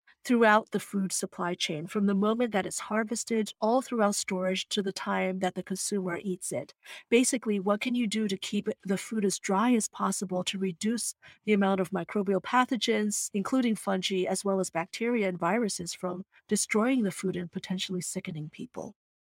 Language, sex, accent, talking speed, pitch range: English, female, American, 180 wpm, 185-230 Hz